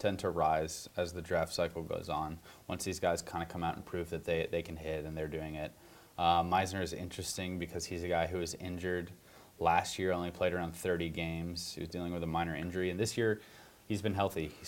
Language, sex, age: English, male, 20-39